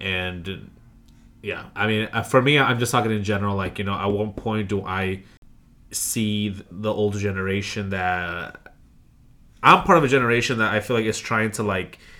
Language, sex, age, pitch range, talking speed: English, male, 20-39, 95-110 Hz, 180 wpm